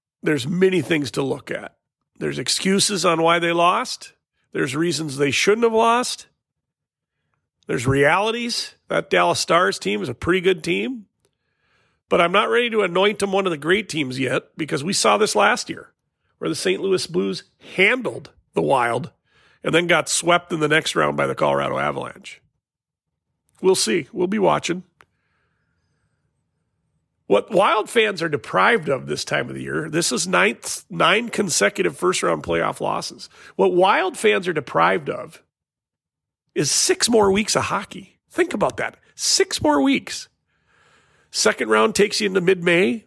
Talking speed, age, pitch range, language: 160 wpm, 40-59, 165-215 Hz, English